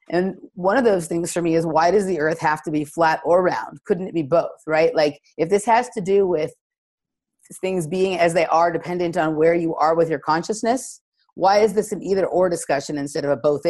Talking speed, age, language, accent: 235 wpm, 30-49, English, American